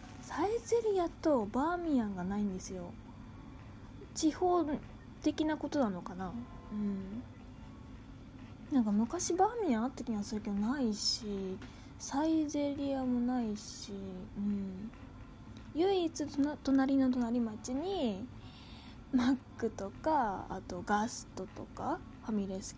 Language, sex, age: Japanese, female, 20-39